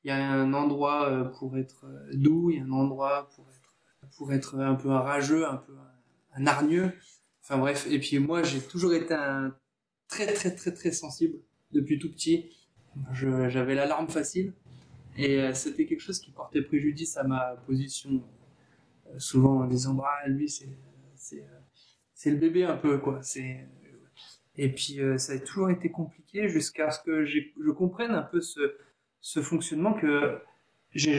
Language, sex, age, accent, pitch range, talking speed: French, male, 20-39, French, 135-165 Hz, 185 wpm